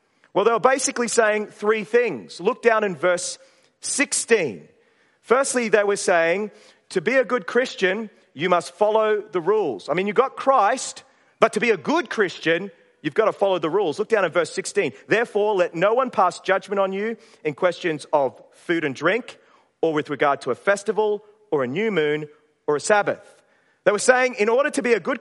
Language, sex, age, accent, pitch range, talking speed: English, male, 30-49, Australian, 185-230 Hz, 200 wpm